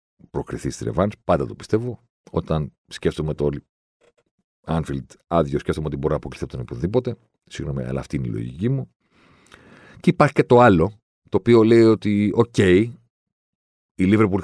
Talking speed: 160 wpm